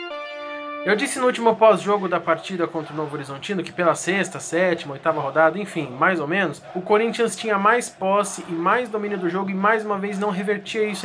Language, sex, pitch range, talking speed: Portuguese, male, 180-225 Hz, 205 wpm